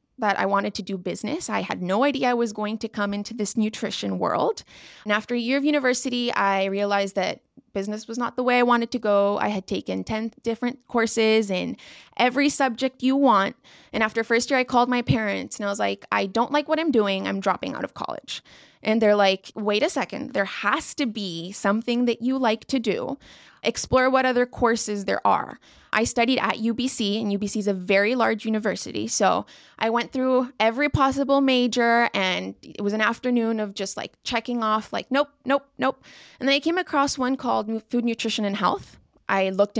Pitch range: 205-250 Hz